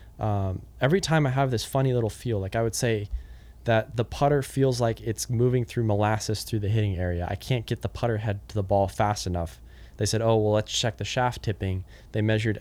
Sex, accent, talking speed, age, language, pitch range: male, American, 230 wpm, 20-39, English, 100-115 Hz